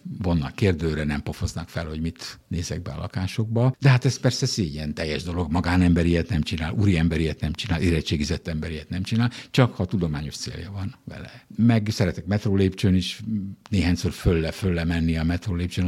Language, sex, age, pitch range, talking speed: Hungarian, male, 60-79, 85-110 Hz, 170 wpm